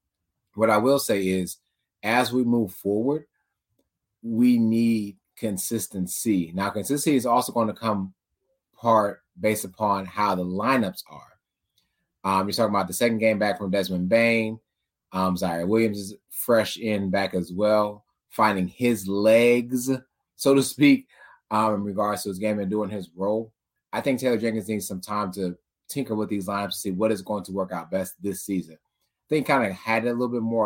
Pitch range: 95-110 Hz